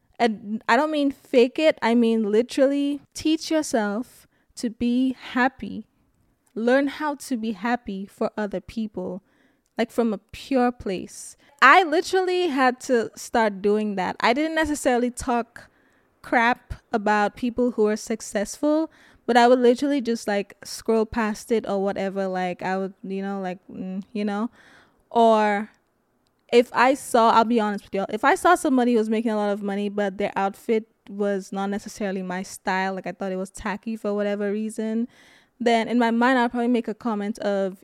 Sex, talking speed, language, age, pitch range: female, 175 wpm, English, 20-39, 210-270 Hz